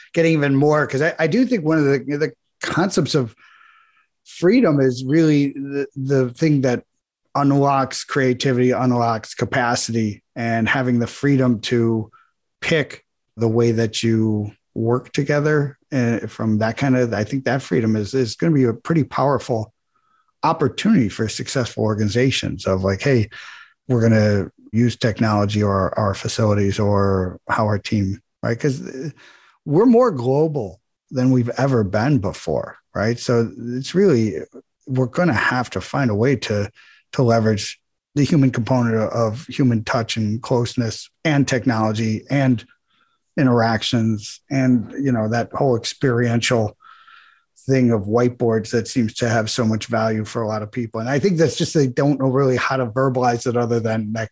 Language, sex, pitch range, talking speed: English, male, 110-135 Hz, 165 wpm